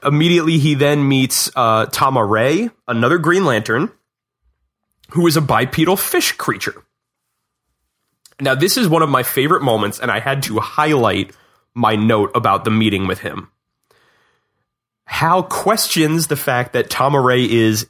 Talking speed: 150 wpm